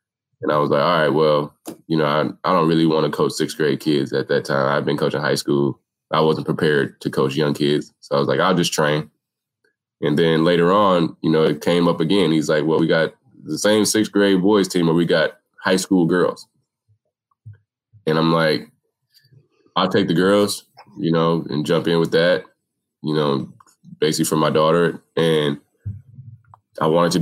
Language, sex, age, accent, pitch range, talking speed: English, male, 20-39, American, 80-100 Hz, 205 wpm